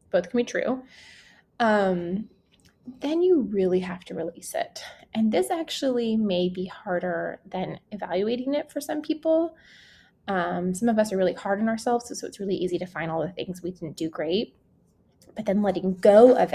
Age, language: 20-39, English